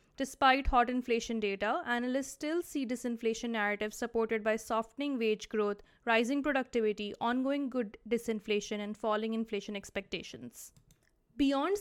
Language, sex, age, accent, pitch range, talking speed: English, female, 20-39, Indian, 220-265 Hz, 120 wpm